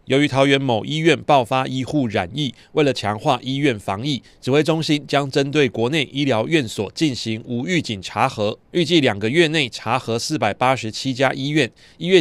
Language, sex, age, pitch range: Chinese, male, 30-49, 110-140 Hz